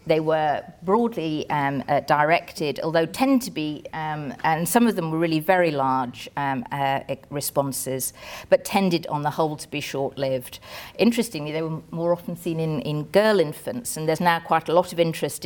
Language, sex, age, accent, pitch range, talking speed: English, female, 50-69, British, 150-180 Hz, 185 wpm